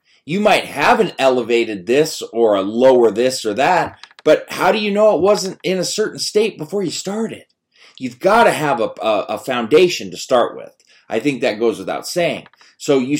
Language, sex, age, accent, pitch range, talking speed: English, male, 30-49, American, 115-175 Hz, 205 wpm